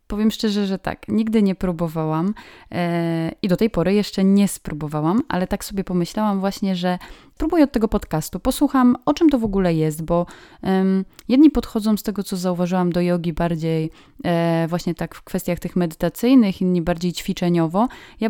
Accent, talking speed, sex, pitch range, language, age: native, 165 wpm, female, 170-205 Hz, Polish, 20-39